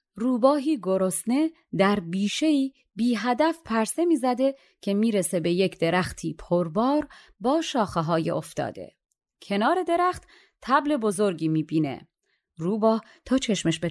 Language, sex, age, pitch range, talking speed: Persian, female, 30-49, 180-285 Hz, 125 wpm